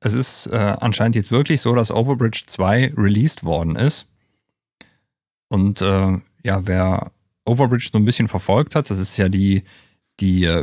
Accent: German